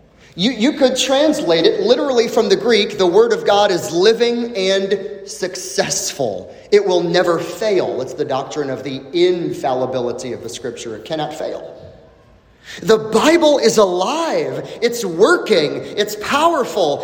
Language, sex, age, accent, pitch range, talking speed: English, male, 30-49, American, 185-300 Hz, 145 wpm